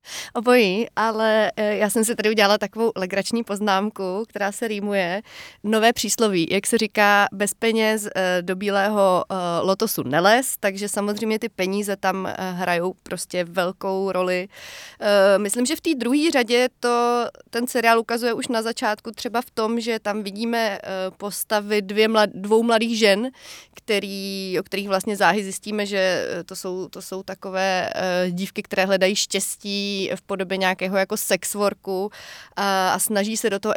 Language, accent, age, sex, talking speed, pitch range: Czech, native, 30-49, female, 150 wpm, 190-220 Hz